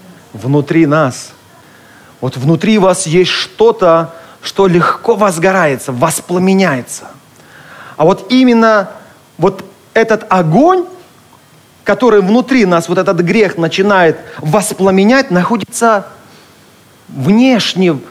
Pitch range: 165-225 Hz